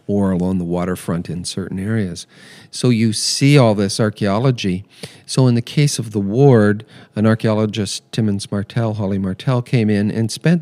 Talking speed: 170 wpm